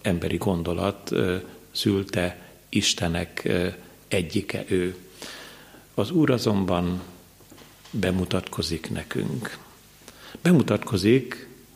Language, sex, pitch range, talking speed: Hungarian, male, 90-110 Hz, 70 wpm